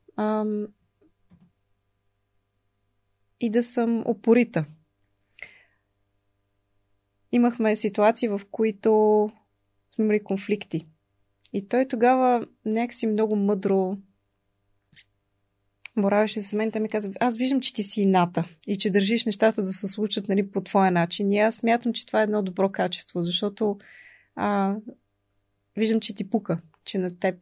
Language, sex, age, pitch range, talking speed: Bulgarian, female, 20-39, 175-220 Hz, 125 wpm